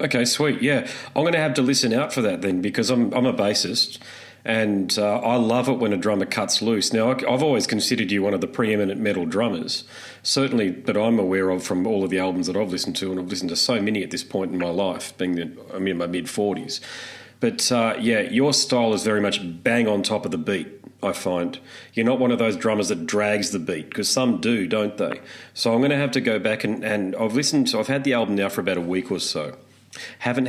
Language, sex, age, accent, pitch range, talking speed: English, male, 40-59, Australian, 95-125 Hz, 250 wpm